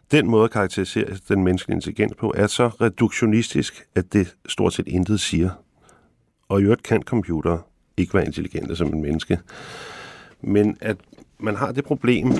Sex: male